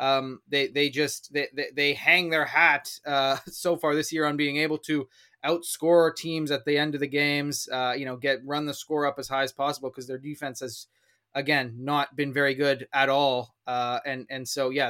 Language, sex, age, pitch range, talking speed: English, male, 20-39, 135-165 Hz, 220 wpm